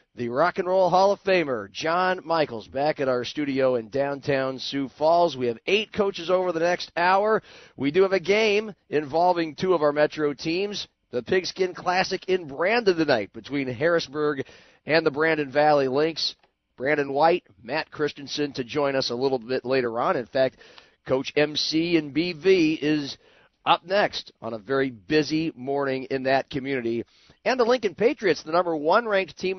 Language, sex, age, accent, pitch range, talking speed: English, male, 40-59, American, 135-170 Hz, 175 wpm